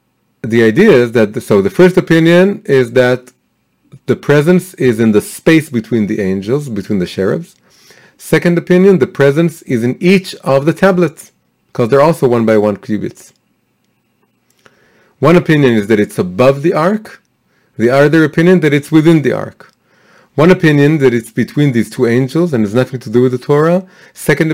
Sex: male